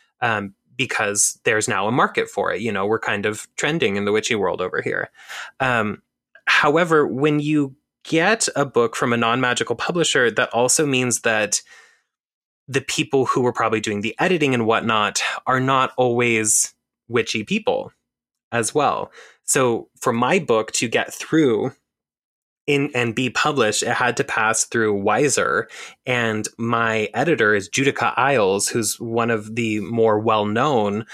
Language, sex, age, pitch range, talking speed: English, male, 20-39, 110-130 Hz, 155 wpm